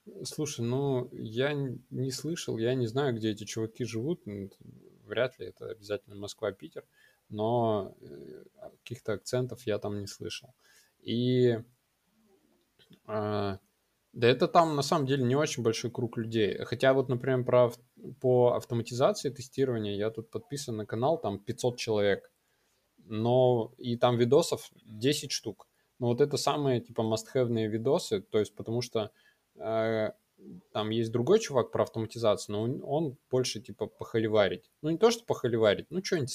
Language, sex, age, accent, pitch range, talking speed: Russian, male, 20-39, native, 105-130 Hz, 145 wpm